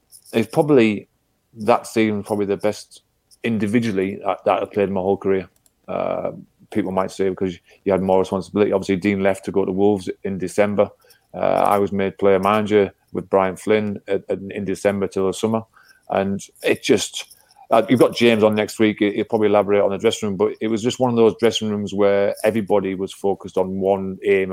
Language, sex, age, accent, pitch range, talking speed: English, male, 30-49, British, 95-110 Hz, 200 wpm